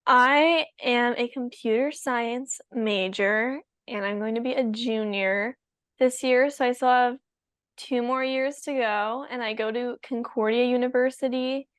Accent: American